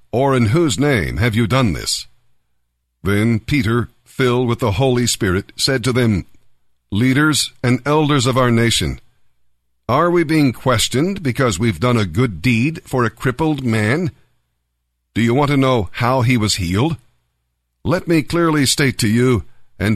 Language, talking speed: English, 165 wpm